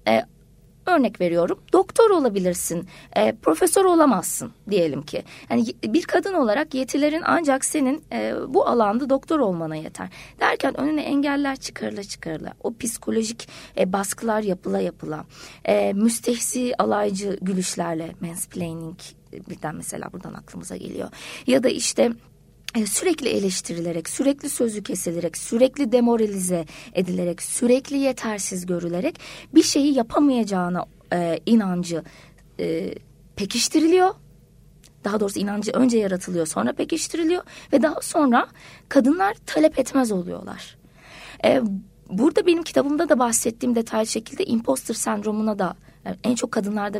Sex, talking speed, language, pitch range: female, 120 wpm, Turkish, 180-275 Hz